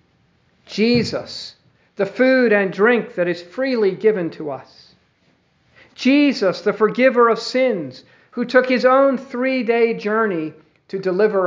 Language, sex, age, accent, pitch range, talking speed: English, male, 50-69, American, 160-230 Hz, 125 wpm